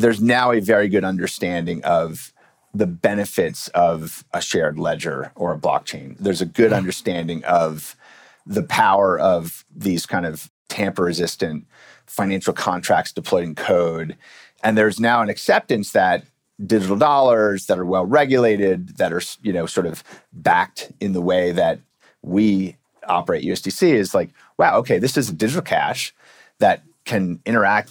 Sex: male